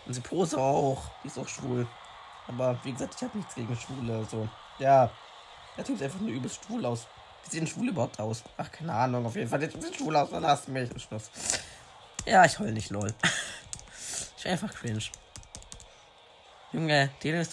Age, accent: 20-39, German